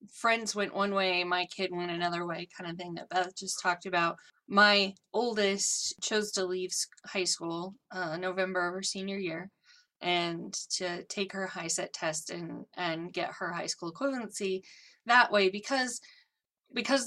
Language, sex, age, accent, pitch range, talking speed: English, female, 20-39, American, 180-225 Hz, 170 wpm